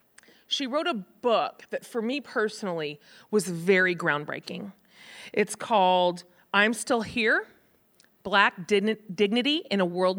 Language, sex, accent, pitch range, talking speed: English, female, American, 195-250 Hz, 125 wpm